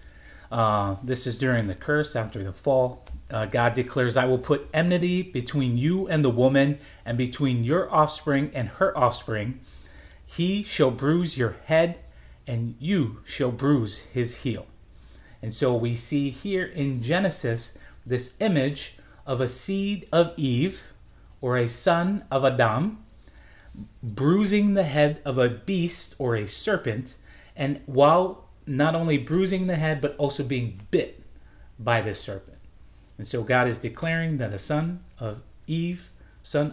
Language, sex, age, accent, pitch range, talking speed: English, male, 30-49, American, 115-150 Hz, 150 wpm